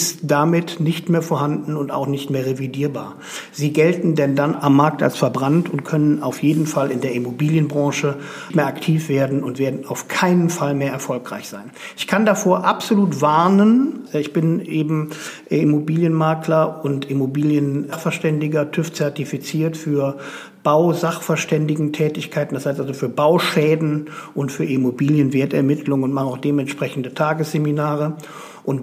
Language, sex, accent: German, male, German